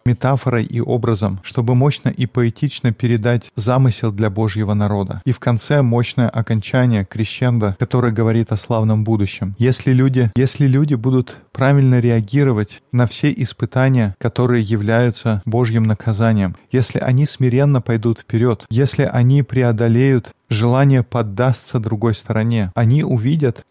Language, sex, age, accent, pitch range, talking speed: Russian, male, 20-39, native, 115-130 Hz, 130 wpm